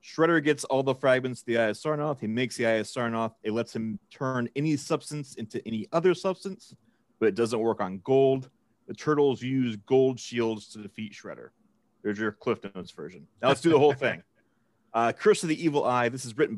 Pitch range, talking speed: 110-135 Hz, 215 wpm